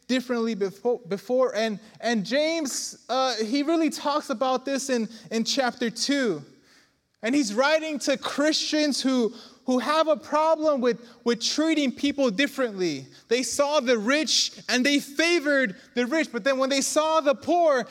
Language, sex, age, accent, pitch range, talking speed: English, male, 20-39, American, 240-295 Hz, 160 wpm